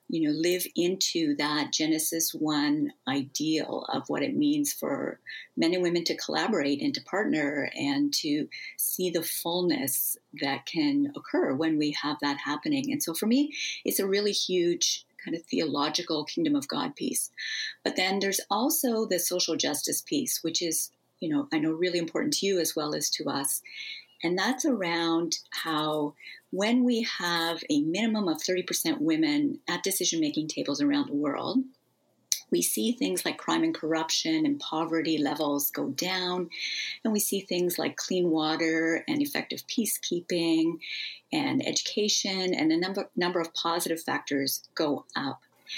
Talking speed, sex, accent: 160 wpm, female, American